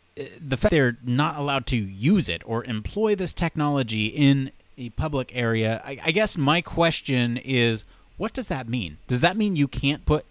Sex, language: male, English